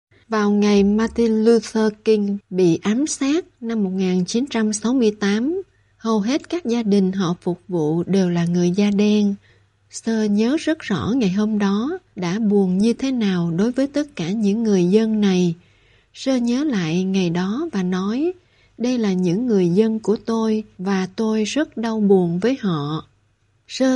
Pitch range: 185-230 Hz